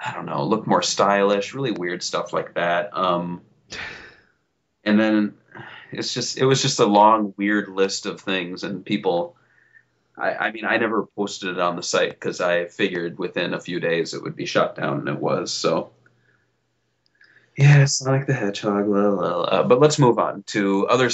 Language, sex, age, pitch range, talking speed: English, male, 30-49, 95-130 Hz, 185 wpm